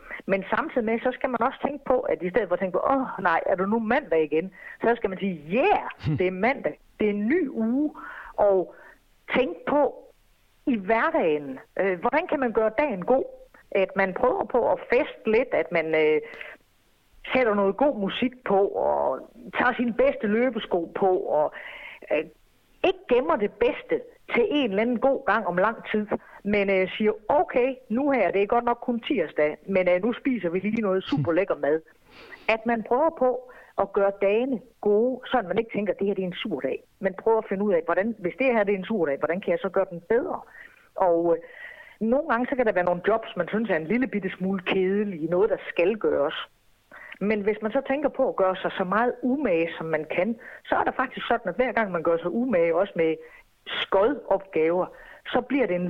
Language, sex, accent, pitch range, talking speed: Danish, female, native, 185-255 Hz, 215 wpm